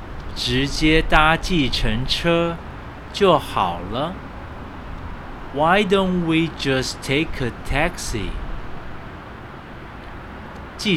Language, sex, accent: Chinese, male, native